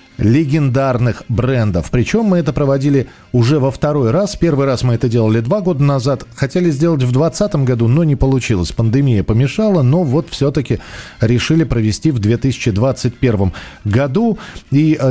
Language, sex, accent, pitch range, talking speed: Russian, male, native, 115-155 Hz, 145 wpm